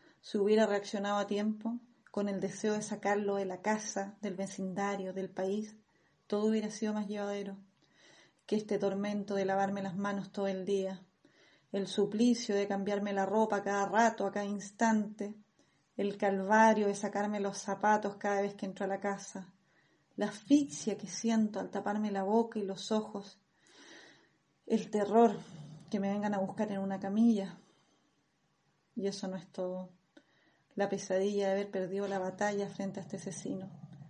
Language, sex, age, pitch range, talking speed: English, female, 30-49, 195-220 Hz, 165 wpm